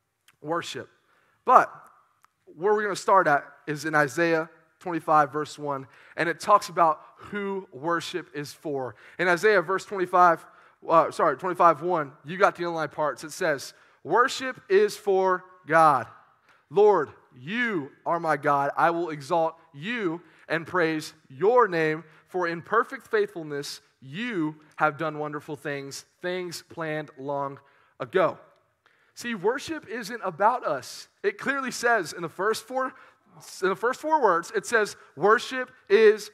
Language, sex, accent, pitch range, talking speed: English, male, American, 155-220 Hz, 145 wpm